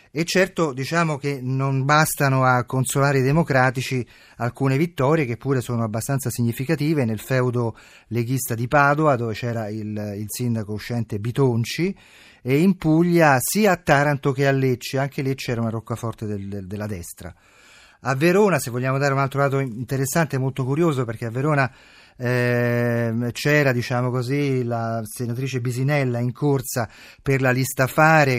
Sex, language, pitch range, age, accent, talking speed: male, Italian, 120-145 Hz, 30-49, native, 150 wpm